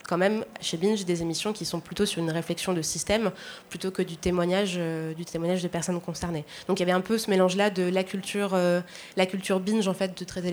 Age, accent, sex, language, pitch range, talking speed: 20-39, French, female, French, 165-195 Hz, 245 wpm